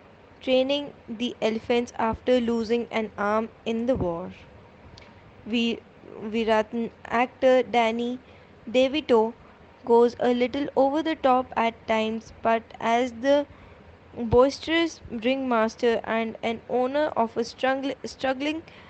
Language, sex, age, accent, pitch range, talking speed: English, female, 20-39, Indian, 215-250 Hz, 105 wpm